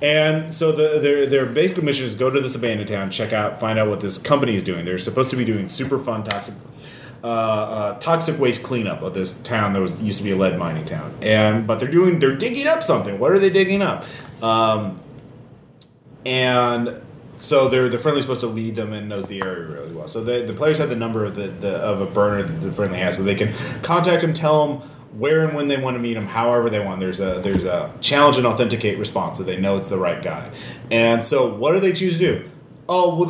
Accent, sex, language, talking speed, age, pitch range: American, male, English, 245 wpm, 30-49, 110-160 Hz